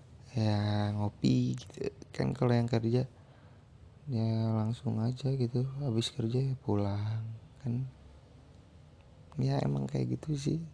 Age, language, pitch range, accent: 20-39, Indonesian, 105-125 Hz, native